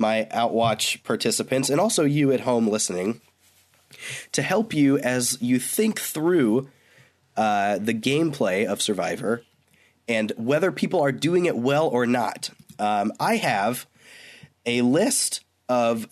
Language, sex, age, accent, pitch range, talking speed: English, male, 20-39, American, 110-155 Hz, 135 wpm